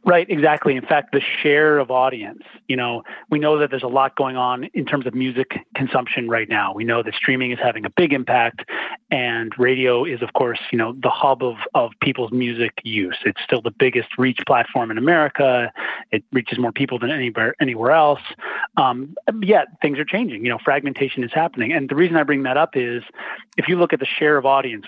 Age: 30-49